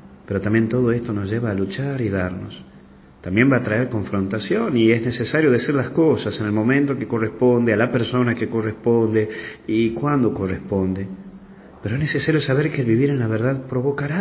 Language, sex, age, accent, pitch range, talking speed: Spanish, male, 40-59, Argentinian, 95-120 Hz, 190 wpm